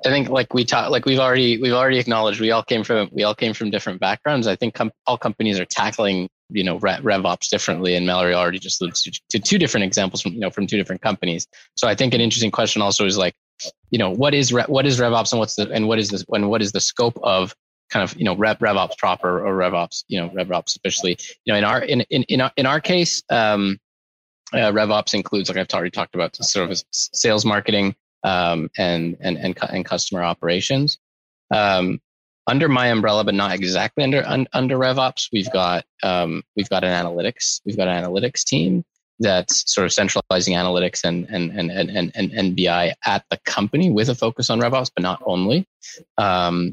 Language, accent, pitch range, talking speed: English, American, 95-125 Hz, 215 wpm